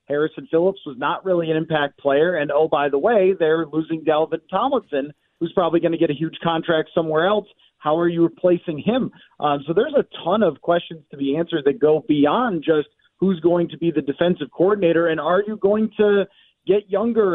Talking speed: 210 wpm